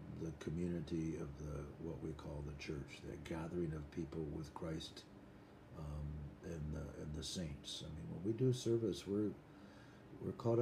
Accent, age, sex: American, 60-79, male